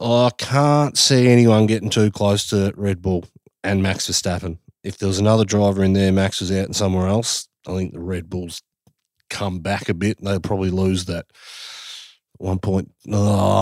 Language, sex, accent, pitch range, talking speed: English, male, Australian, 90-105 Hz, 195 wpm